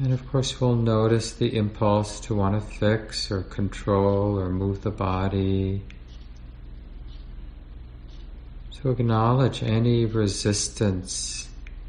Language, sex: English, male